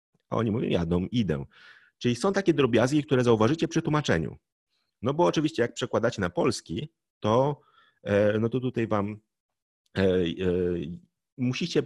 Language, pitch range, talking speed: Polish, 95-135 Hz, 130 wpm